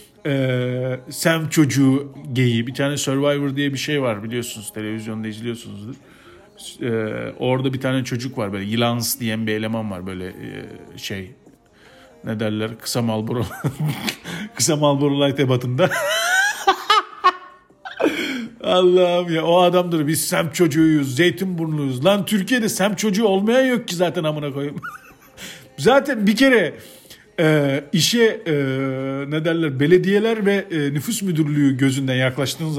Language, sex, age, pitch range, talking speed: Turkish, male, 50-69, 135-195 Hz, 125 wpm